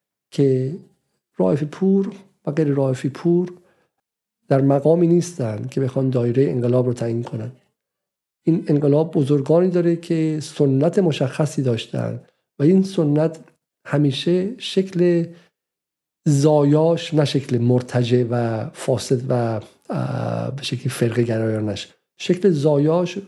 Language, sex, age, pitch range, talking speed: Persian, male, 50-69, 125-155 Hz, 105 wpm